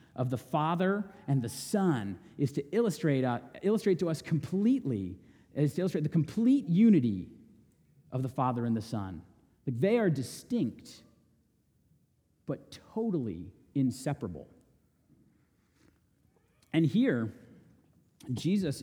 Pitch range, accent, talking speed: 150-225 Hz, American, 115 wpm